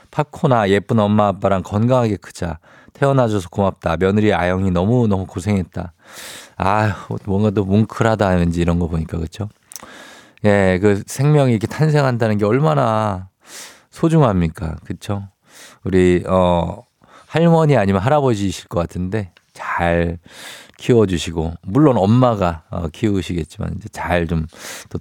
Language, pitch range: Korean, 90-115 Hz